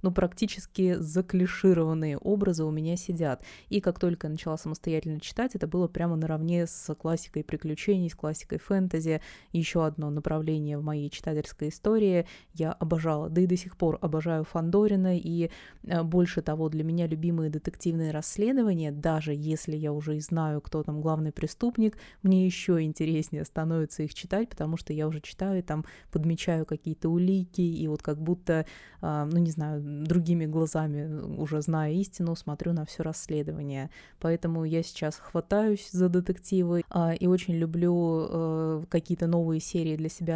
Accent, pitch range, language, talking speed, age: native, 155-180 Hz, Russian, 155 wpm, 20-39